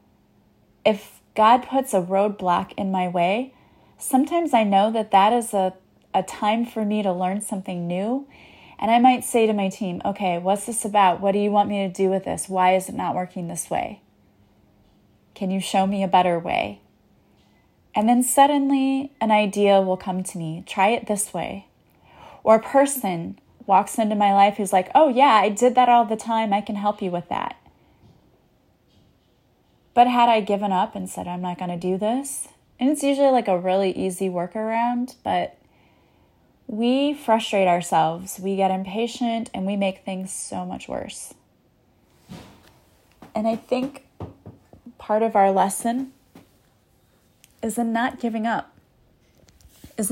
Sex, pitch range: female, 190-235 Hz